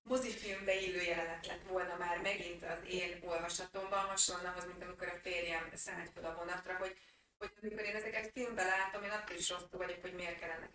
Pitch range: 170-190 Hz